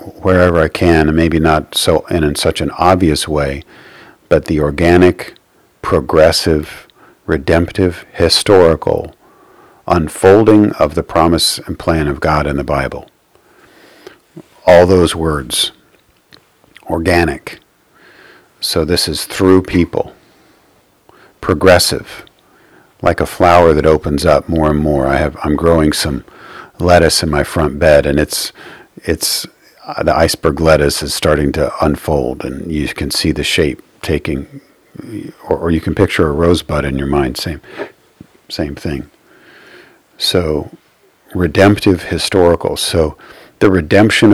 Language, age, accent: English, 50-69, American